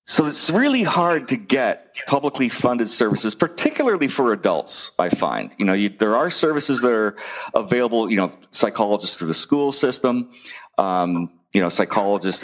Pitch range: 95-135 Hz